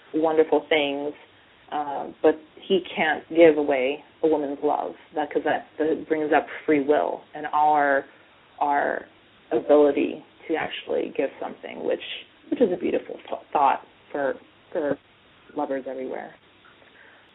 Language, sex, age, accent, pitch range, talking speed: English, female, 30-49, American, 155-195 Hz, 130 wpm